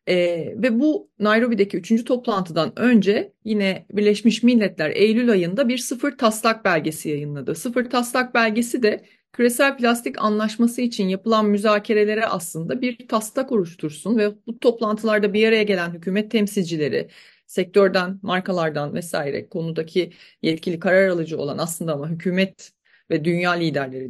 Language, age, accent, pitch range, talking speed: Turkish, 30-49, native, 180-230 Hz, 130 wpm